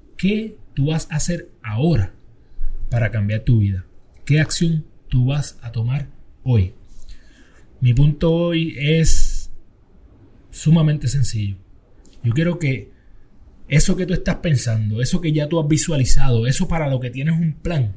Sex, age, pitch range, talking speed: male, 30-49, 115-155 Hz, 145 wpm